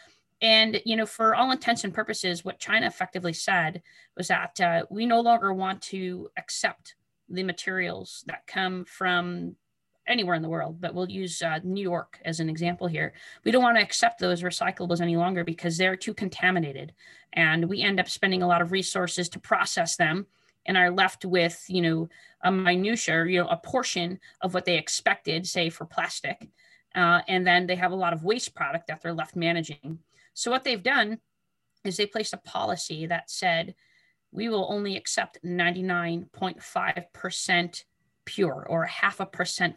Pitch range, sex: 170-195 Hz, female